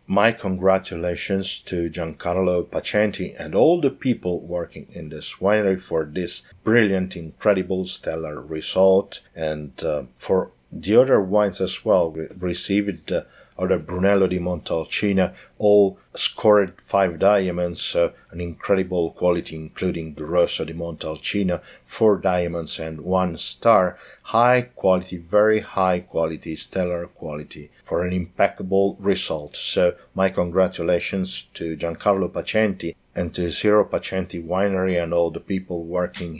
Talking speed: 130 wpm